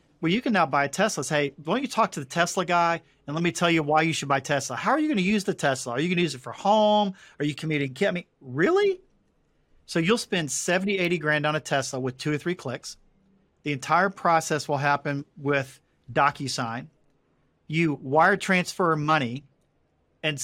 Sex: male